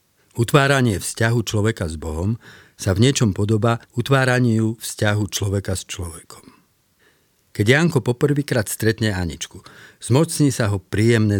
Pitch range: 95-120 Hz